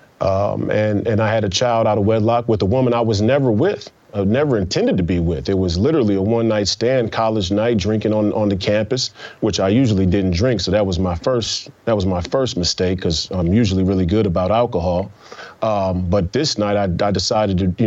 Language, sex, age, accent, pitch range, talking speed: English, male, 30-49, American, 100-125 Hz, 230 wpm